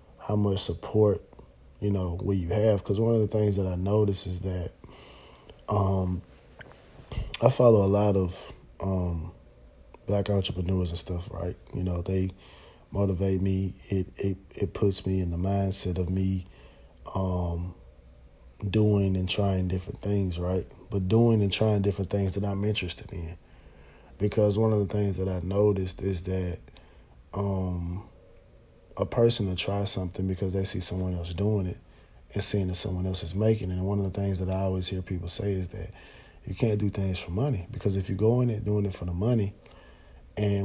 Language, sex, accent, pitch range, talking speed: English, male, American, 90-105 Hz, 180 wpm